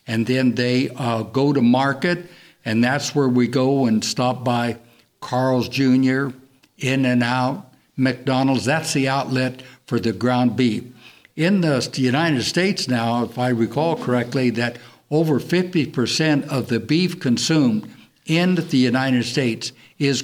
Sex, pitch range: male, 120-150 Hz